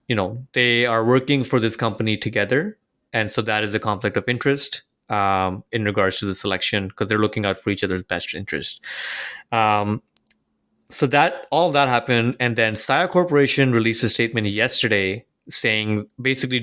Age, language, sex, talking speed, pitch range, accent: 20-39, English, male, 175 wpm, 100-120 Hz, Indian